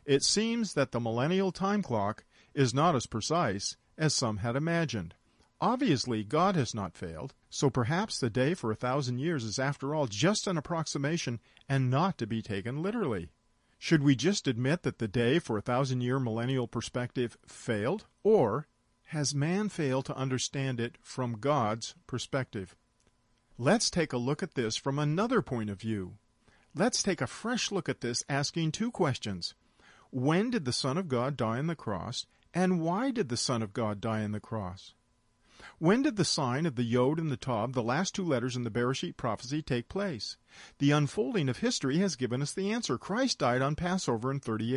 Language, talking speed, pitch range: English, 190 wpm, 120-170 Hz